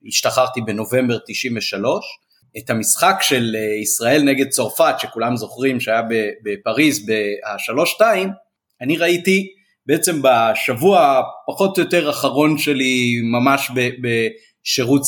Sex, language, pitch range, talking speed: male, Hebrew, 125-160 Hz, 105 wpm